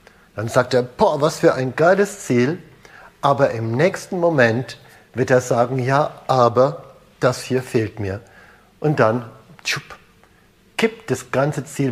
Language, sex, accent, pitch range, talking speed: German, male, German, 110-135 Hz, 145 wpm